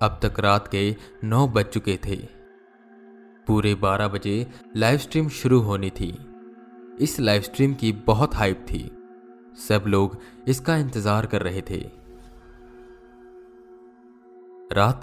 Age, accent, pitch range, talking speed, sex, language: 20-39, native, 100-120 Hz, 125 wpm, male, Hindi